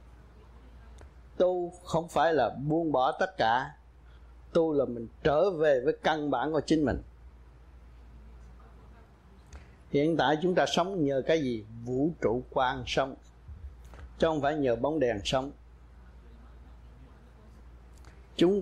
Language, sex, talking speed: Vietnamese, male, 125 wpm